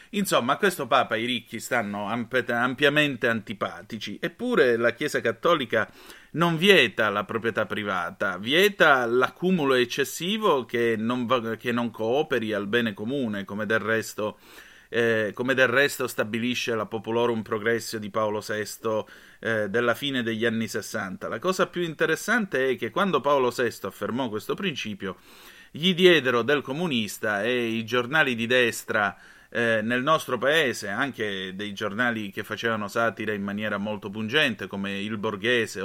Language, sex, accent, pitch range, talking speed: Italian, male, native, 110-140 Hz, 150 wpm